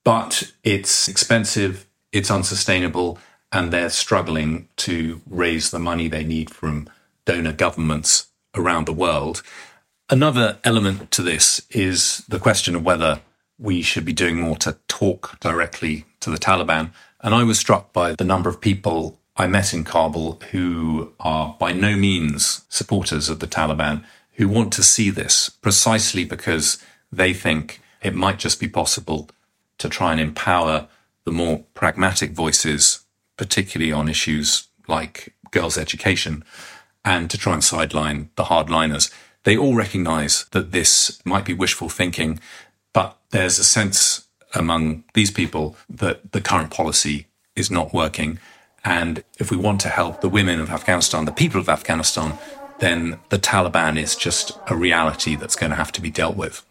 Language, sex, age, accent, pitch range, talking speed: English, male, 40-59, British, 80-100 Hz, 160 wpm